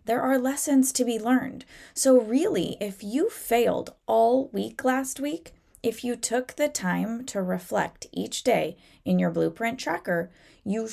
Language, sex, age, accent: English, female, 20-39, American